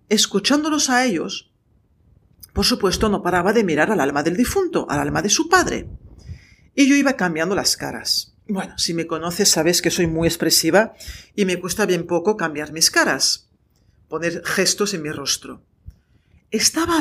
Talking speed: 165 wpm